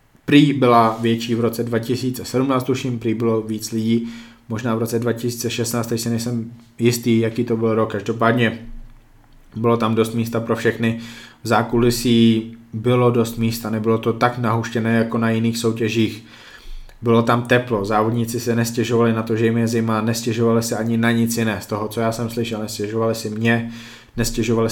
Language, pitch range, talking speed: Czech, 115-120 Hz, 170 wpm